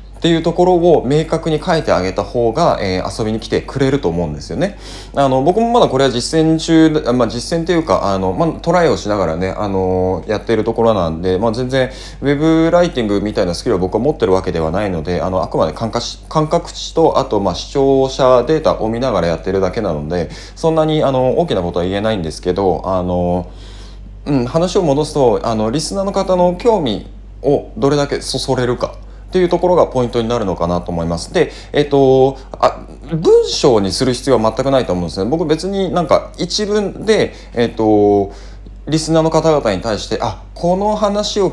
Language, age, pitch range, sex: Japanese, 20-39, 95-160 Hz, male